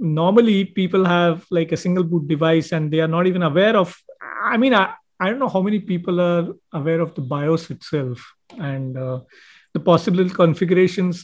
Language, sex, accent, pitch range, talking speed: English, male, Indian, 160-200 Hz, 185 wpm